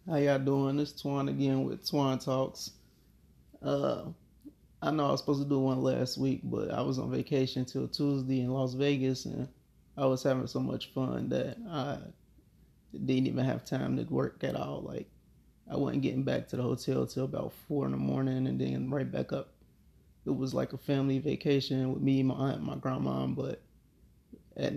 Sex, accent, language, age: male, American, English, 20-39